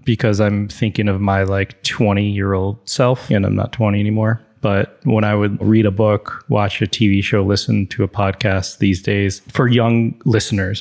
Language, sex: English, male